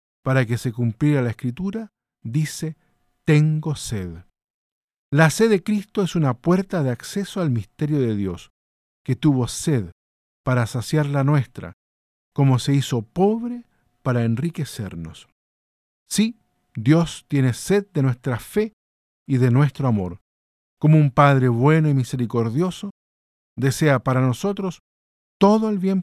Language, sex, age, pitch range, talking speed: Spanish, male, 50-69, 115-160 Hz, 135 wpm